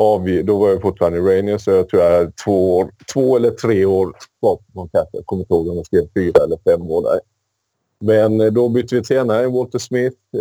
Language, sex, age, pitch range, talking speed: Swedish, male, 30-49, 95-125 Hz, 215 wpm